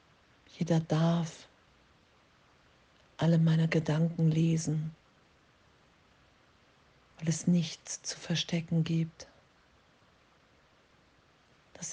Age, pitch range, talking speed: 50-69, 155-165 Hz, 65 wpm